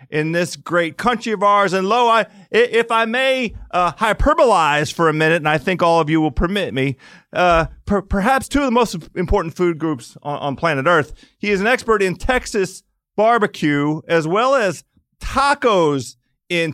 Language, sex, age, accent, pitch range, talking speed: English, male, 40-59, American, 170-245 Hz, 180 wpm